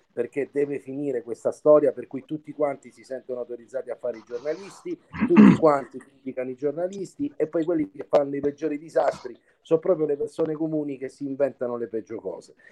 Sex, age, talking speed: male, 40-59, 190 wpm